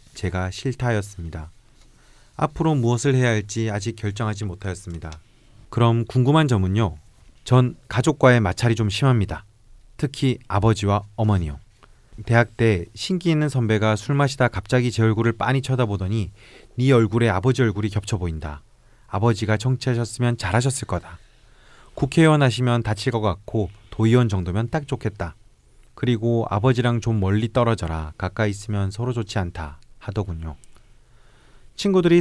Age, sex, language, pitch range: 30-49, male, Korean, 100-125 Hz